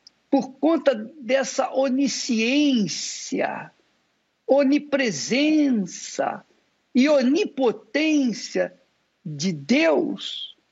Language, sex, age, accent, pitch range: Portuguese, male, 60-79, Brazilian, 235-300 Hz